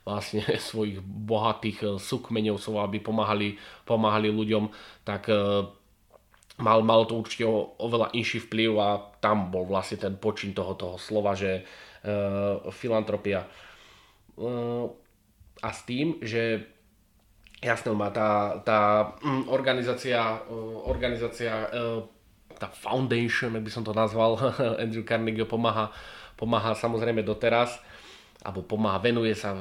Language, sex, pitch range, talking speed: Slovak, male, 100-115 Hz, 115 wpm